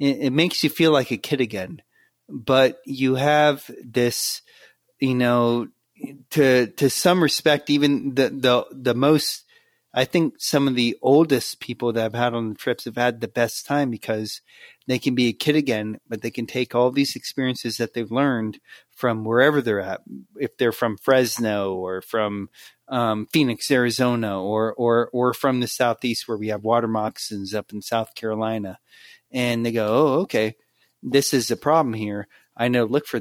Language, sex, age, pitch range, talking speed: English, male, 30-49, 115-135 Hz, 180 wpm